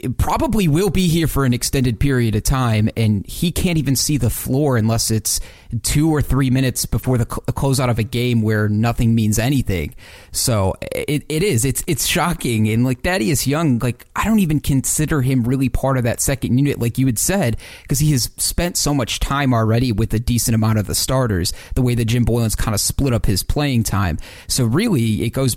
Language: English